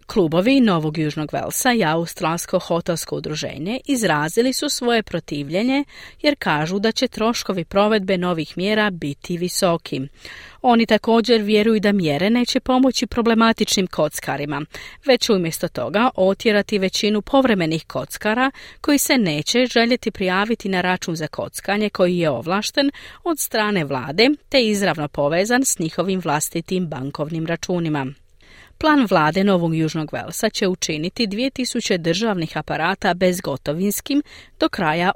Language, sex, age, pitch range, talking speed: Croatian, female, 40-59, 165-230 Hz, 130 wpm